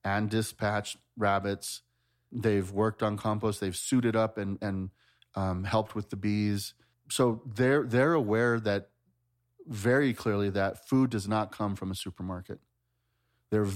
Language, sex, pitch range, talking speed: English, male, 100-110 Hz, 145 wpm